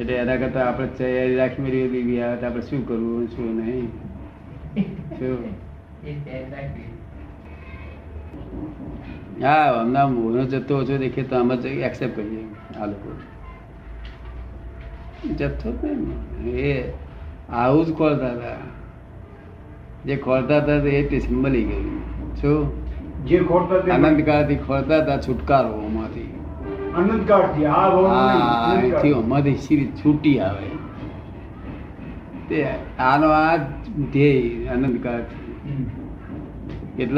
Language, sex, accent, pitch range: Gujarati, male, native, 105-135 Hz